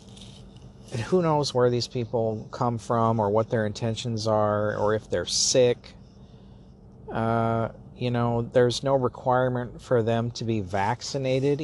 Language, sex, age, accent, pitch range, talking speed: English, male, 50-69, American, 105-125 Hz, 145 wpm